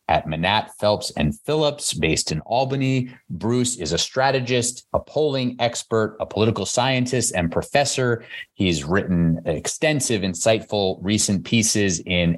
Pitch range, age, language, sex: 85-110 Hz, 30-49, English, male